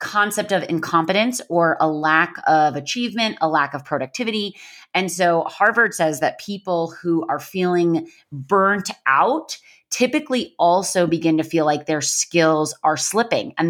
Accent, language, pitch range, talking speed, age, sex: American, English, 155-195 Hz, 150 wpm, 30-49, female